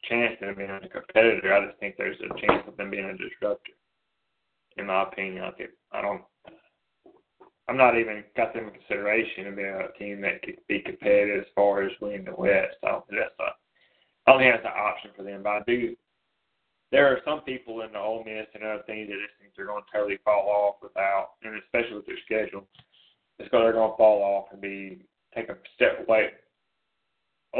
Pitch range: 100-120 Hz